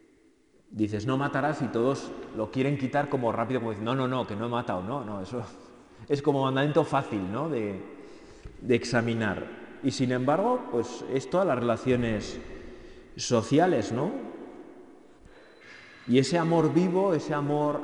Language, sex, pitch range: Spanish, male, 110-145 Hz